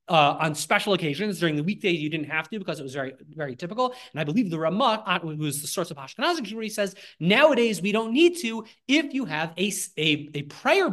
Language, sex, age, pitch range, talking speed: English, male, 30-49, 150-205 Hz, 235 wpm